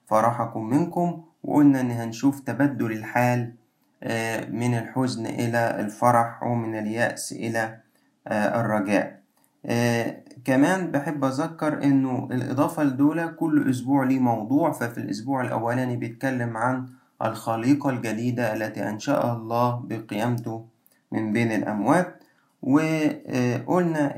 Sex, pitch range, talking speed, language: male, 115-145 Hz, 100 wpm, Arabic